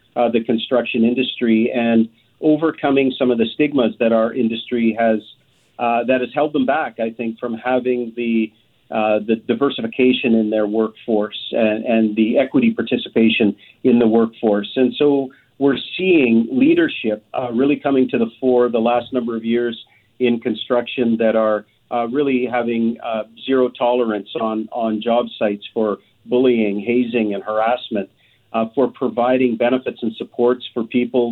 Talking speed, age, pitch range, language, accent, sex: 155 wpm, 50-69, 110-125 Hz, English, American, male